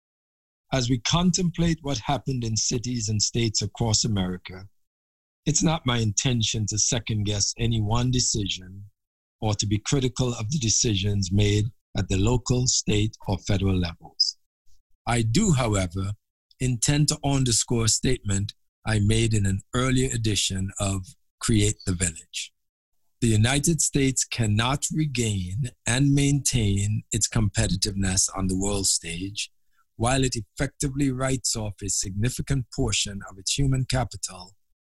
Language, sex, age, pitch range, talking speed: English, male, 50-69, 95-130 Hz, 135 wpm